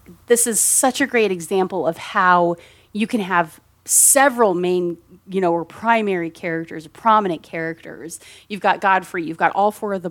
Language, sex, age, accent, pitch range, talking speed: English, female, 30-49, American, 160-200 Hz, 170 wpm